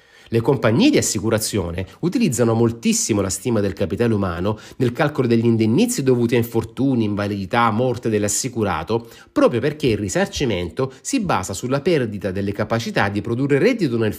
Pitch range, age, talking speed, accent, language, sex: 100-125 Hz, 30-49, 150 wpm, native, Italian, male